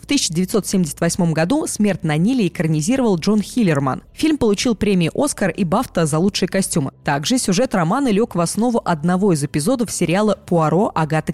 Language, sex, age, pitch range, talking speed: Russian, female, 20-39, 165-225 Hz, 160 wpm